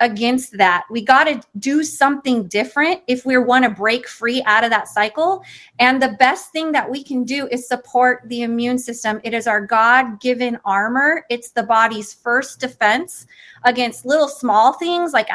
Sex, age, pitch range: female, 30-49, 220-265 Hz